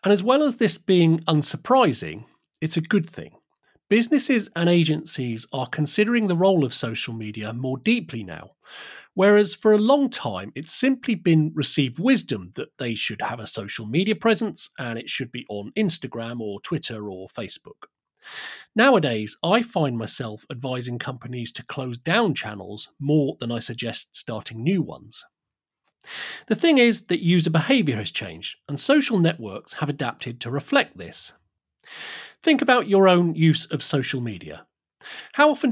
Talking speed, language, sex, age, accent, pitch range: 160 wpm, English, male, 40-59, British, 125-205 Hz